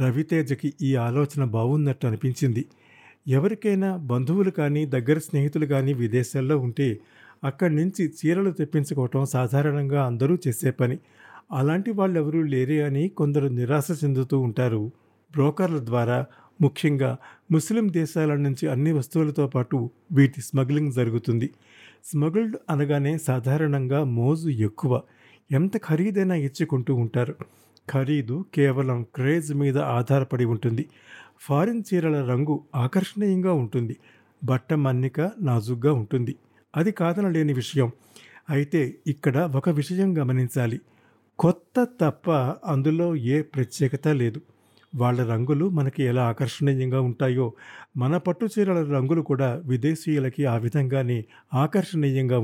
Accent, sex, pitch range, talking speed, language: native, male, 130-160 Hz, 110 wpm, Telugu